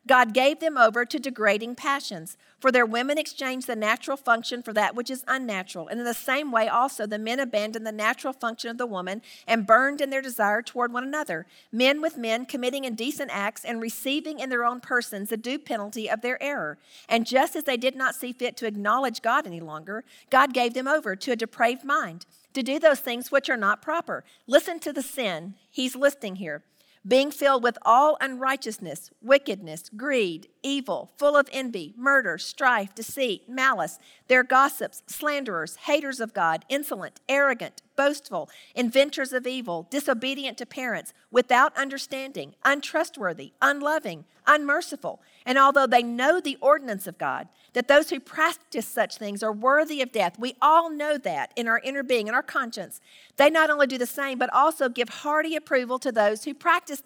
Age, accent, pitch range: 50-69, American, 225-280 Hz